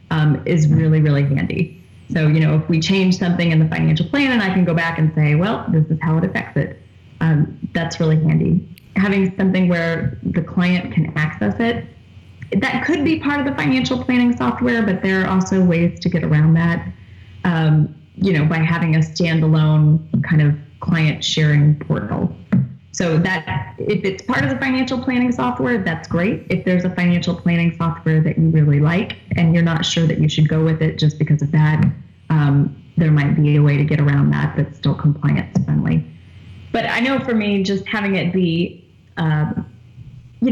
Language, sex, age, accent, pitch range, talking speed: English, female, 20-39, American, 155-185 Hz, 195 wpm